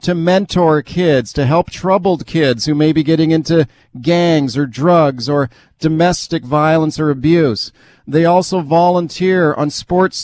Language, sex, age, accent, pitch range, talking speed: English, male, 40-59, American, 145-170 Hz, 145 wpm